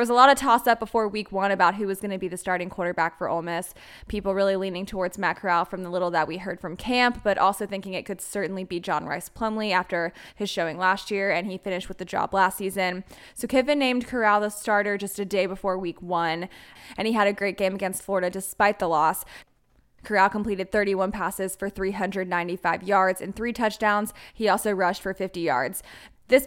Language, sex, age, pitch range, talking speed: English, female, 10-29, 185-215 Hz, 225 wpm